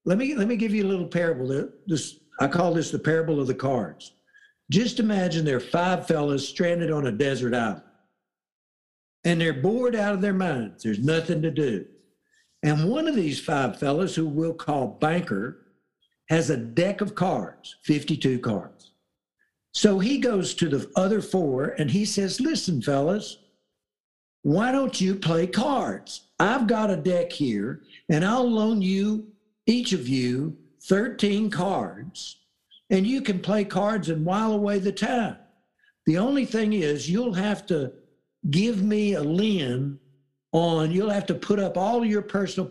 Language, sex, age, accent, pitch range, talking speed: English, male, 60-79, American, 150-205 Hz, 165 wpm